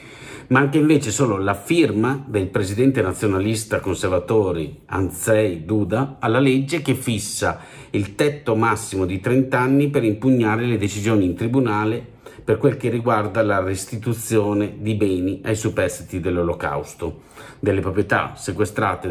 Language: Italian